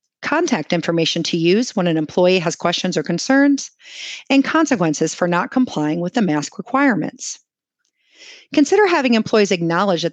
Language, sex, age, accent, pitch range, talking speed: English, female, 40-59, American, 175-270 Hz, 150 wpm